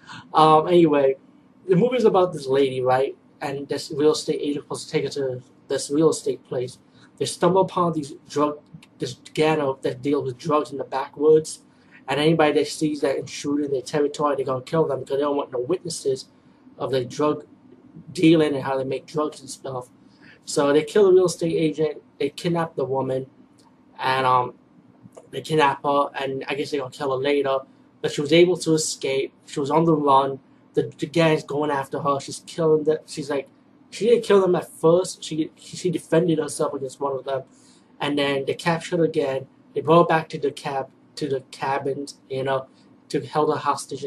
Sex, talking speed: male, 210 wpm